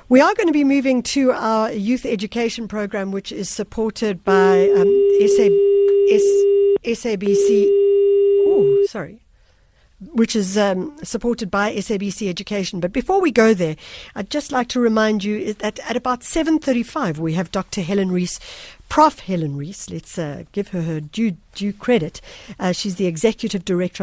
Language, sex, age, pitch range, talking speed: English, female, 60-79, 175-230 Hz, 165 wpm